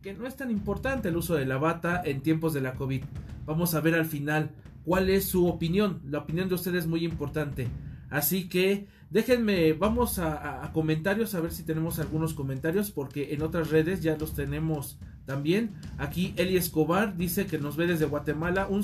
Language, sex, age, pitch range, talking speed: English, male, 40-59, 150-185 Hz, 200 wpm